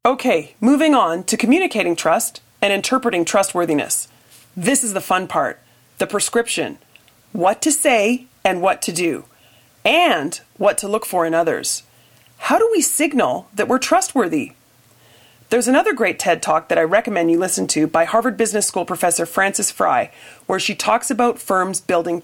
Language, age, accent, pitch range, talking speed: English, 30-49, American, 170-245 Hz, 165 wpm